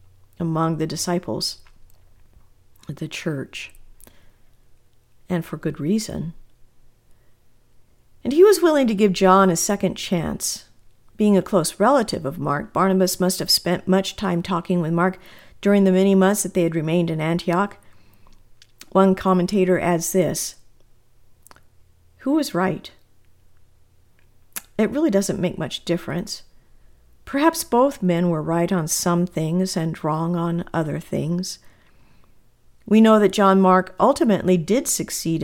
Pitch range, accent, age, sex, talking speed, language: 160-190 Hz, American, 50-69, female, 130 wpm, English